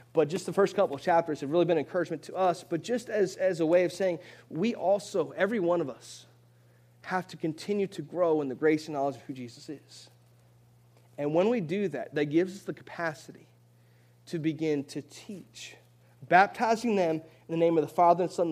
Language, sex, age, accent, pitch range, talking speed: English, male, 30-49, American, 120-180 Hz, 215 wpm